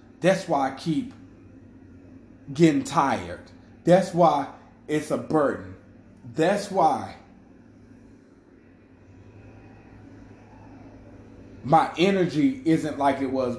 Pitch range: 105-160 Hz